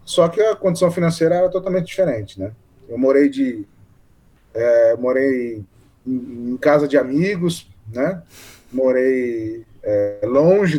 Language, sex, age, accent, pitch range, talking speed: Portuguese, male, 20-39, Brazilian, 115-155 Hz, 120 wpm